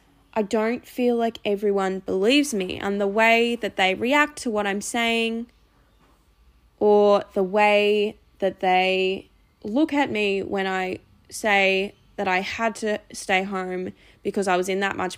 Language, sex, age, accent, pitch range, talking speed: English, female, 10-29, Australian, 195-230 Hz, 160 wpm